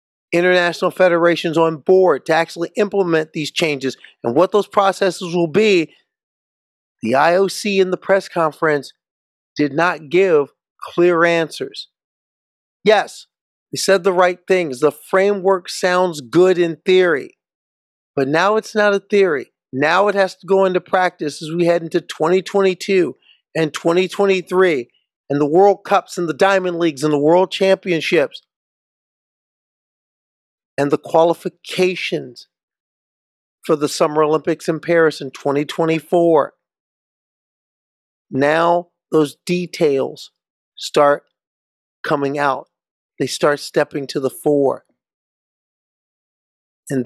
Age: 40-59